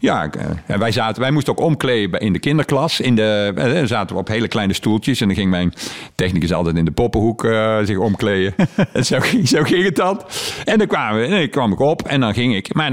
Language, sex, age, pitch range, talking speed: Dutch, male, 50-69, 105-165 Hz, 245 wpm